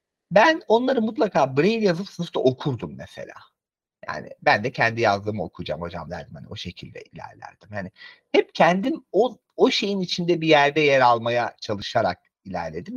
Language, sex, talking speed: Turkish, male, 155 wpm